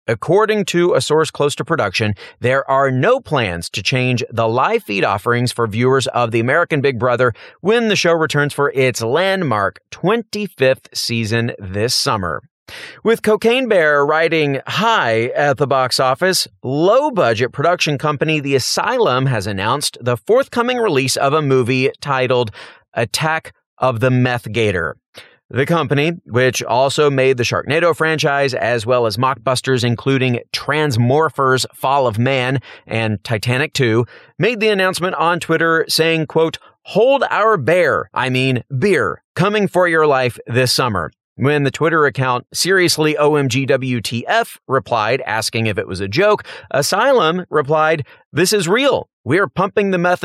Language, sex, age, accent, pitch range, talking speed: English, male, 30-49, American, 125-165 Hz, 150 wpm